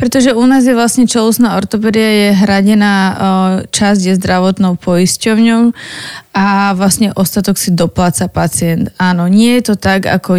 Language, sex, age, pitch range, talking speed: Slovak, female, 20-39, 190-215 Hz, 145 wpm